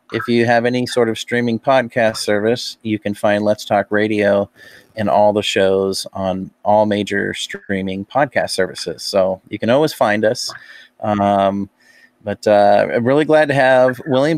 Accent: American